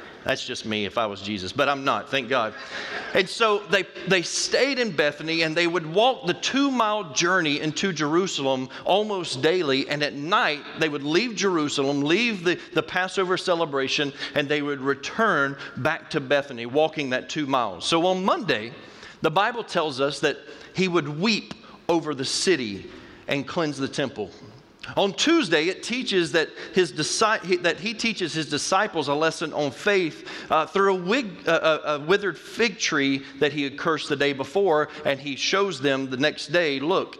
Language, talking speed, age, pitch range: English, 180 wpm, 40-59, 140-190 Hz